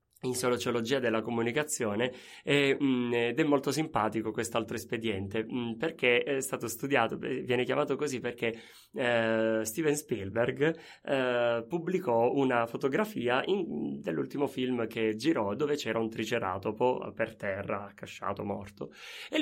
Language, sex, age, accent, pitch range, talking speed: Italian, male, 20-39, native, 125-170 Hz, 135 wpm